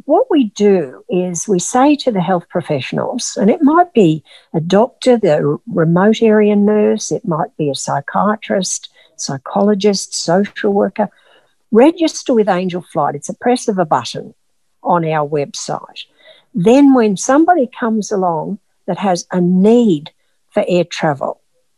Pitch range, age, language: 170-235 Hz, 60-79, English